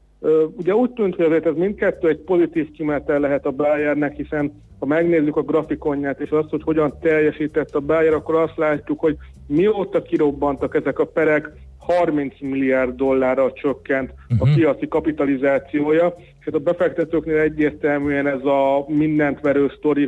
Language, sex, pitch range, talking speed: Hungarian, male, 140-165 Hz, 150 wpm